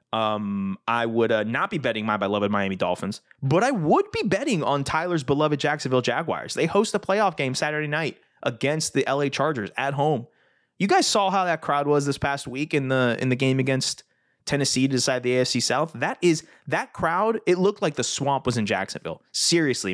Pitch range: 115-150 Hz